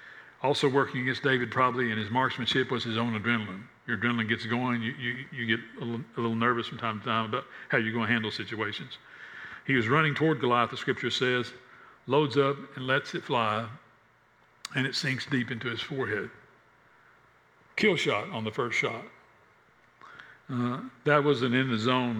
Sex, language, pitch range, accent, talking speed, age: male, English, 110-130 Hz, American, 185 wpm, 60-79